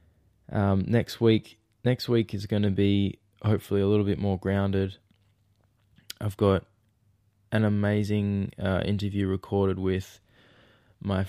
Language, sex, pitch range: English, male, 95-105 Hz